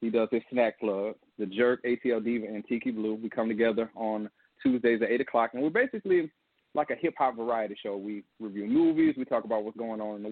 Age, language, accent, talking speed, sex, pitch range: 30-49, English, American, 225 wpm, male, 115-135 Hz